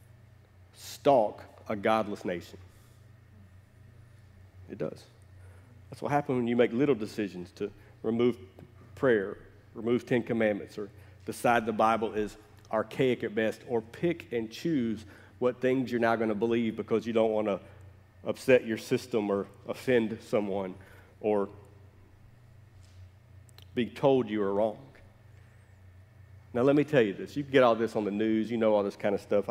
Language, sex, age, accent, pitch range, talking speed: English, male, 50-69, American, 100-135 Hz, 155 wpm